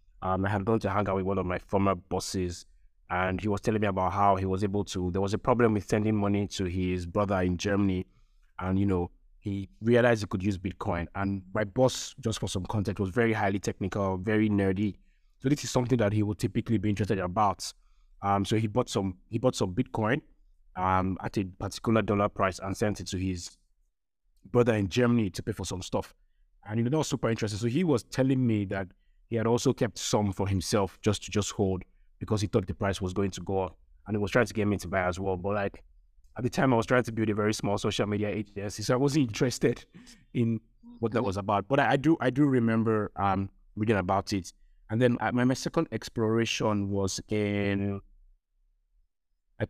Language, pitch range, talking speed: English, 95-115 Hz, 225 wpm